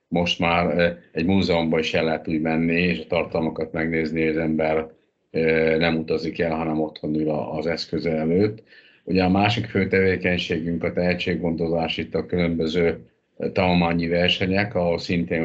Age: 50-69